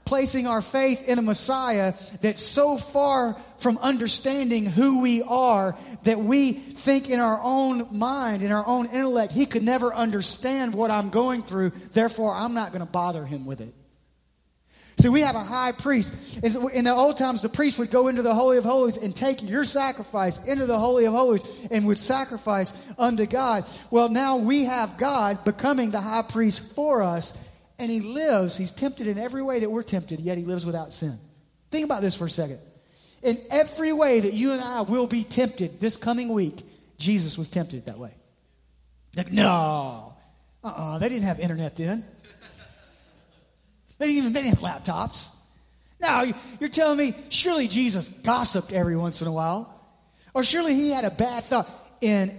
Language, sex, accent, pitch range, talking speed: English, male, American, 180-250 Hz, 185 wpm